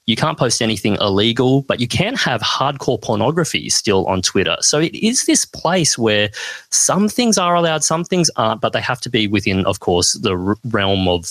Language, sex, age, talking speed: English, male, 30-49, 200 wpm